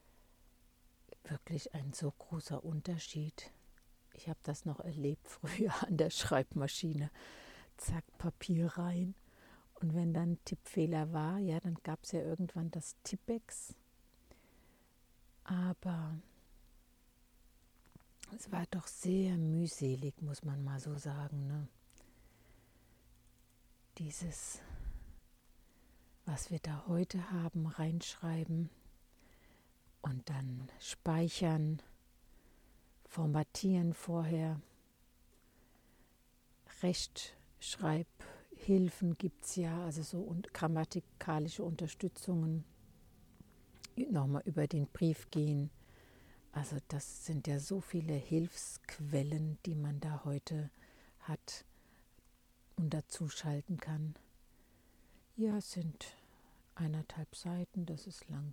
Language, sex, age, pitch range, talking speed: German, female, 60-79, 140-170 Hz, 95 wpm